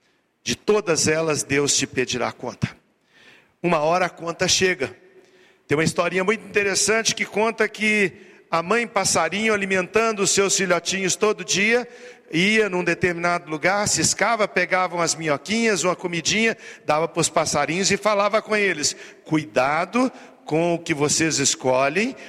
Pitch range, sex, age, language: 175-235 Hz, male, 50-69, Portuguese